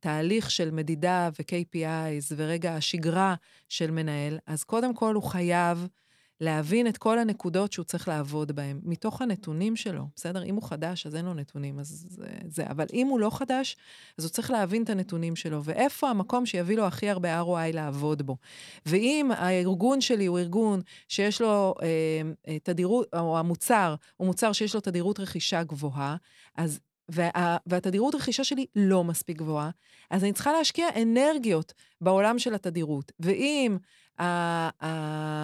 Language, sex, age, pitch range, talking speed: Hebrew, female, 30-49, 165-220 Hz, 155 wpm